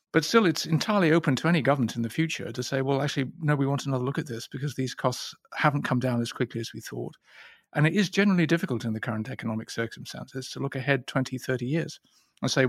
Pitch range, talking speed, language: 125-160 Hz, 240 wpm, English